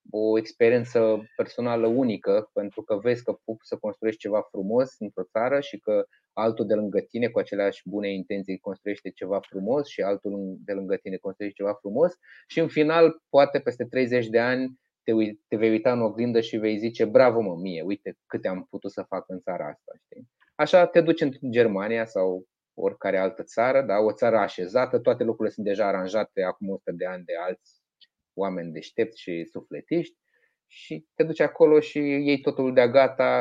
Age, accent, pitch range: 20-39, native, 100-125 Hz